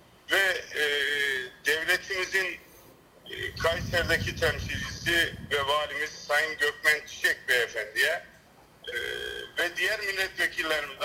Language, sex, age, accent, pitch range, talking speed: Turkish, male, 50-69, native, 160-190 Hz, 85 wpm